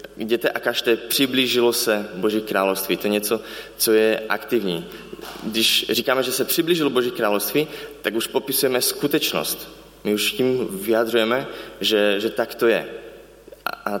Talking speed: 145 wpm